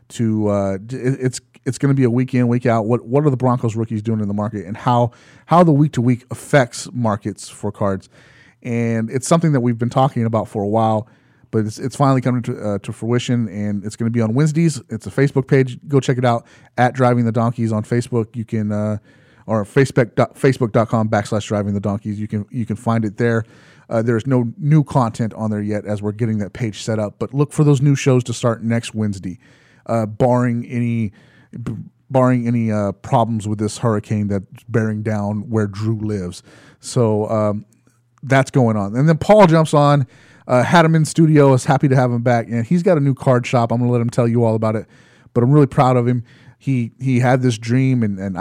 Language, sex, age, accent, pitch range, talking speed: English, male, 30-49, American, 110-130 Hz, 230 wpm